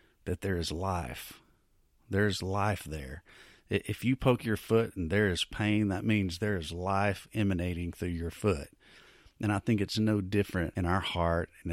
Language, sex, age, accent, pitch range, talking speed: English, male, 40-59, American, 85-105 Hz, 180 wpm